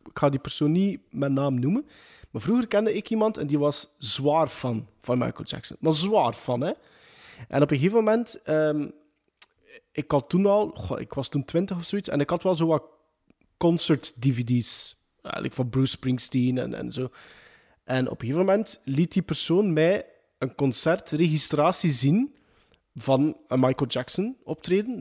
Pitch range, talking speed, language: 135-185 Hz, 175 wpm, Dutch